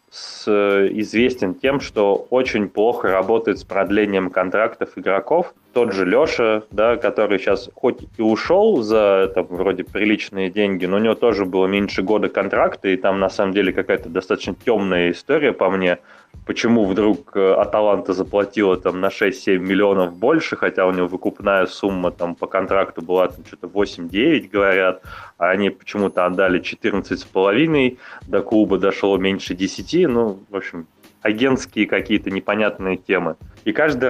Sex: male